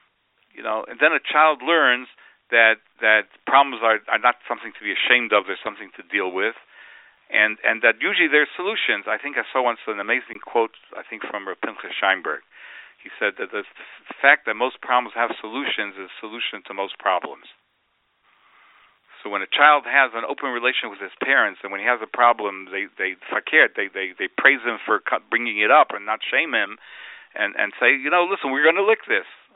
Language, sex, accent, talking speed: English, male, American, 210 wpm